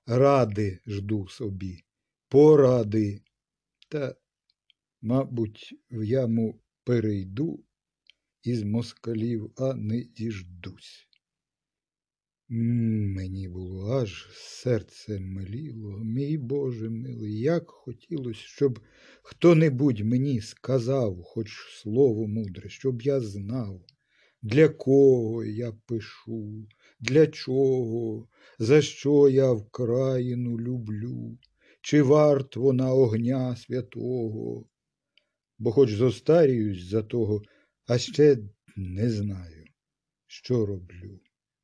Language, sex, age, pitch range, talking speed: Ukrainian, male, 50-69, 105-130 Hz, 90 wpm